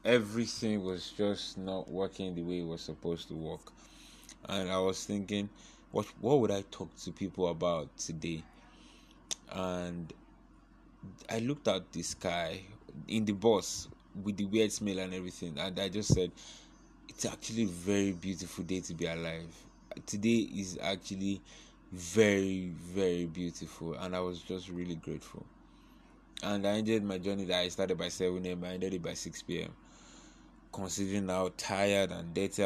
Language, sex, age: English, male, 20-39